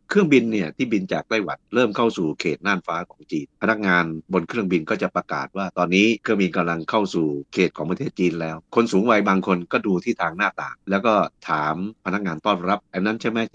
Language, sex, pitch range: Thai, male, 85-105 Hz